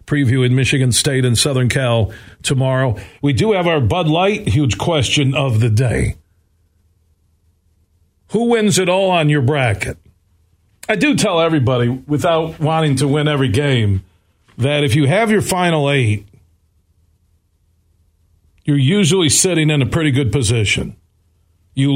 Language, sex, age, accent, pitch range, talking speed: English, male, 40-59, American, 110-150 Hz, 140 wpm